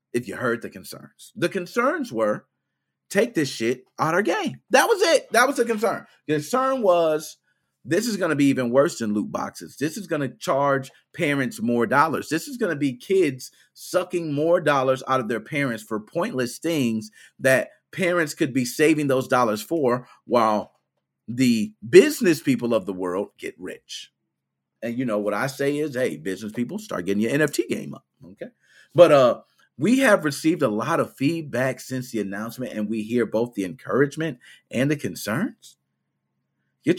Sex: male